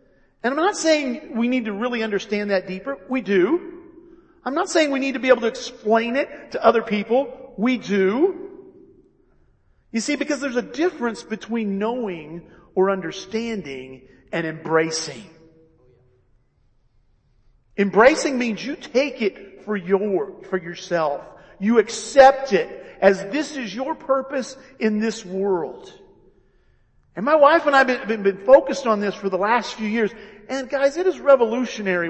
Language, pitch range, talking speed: English, 180-265 Hz, 155 wpm